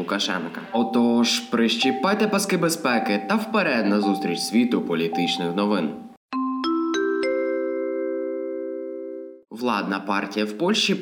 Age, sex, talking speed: 20-39, male, 85 wpm